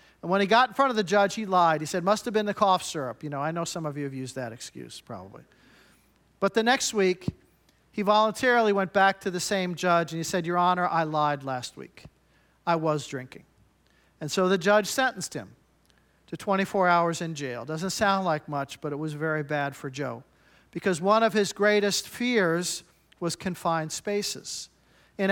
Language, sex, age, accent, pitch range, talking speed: English, male, 50-69, American, 165-210 Hz, 205 wpm